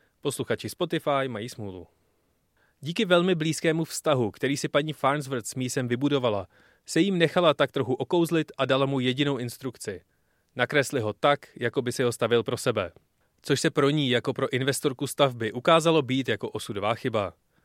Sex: male